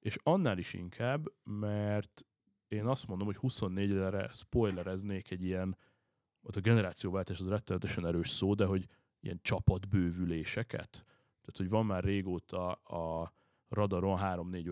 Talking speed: 130 wpm